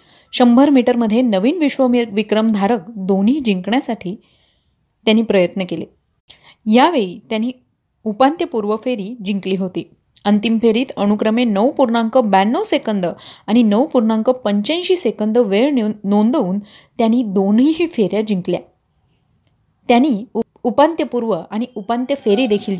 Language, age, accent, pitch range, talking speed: Marathi, 30-49, native, 205-255 Hz, 95 wpm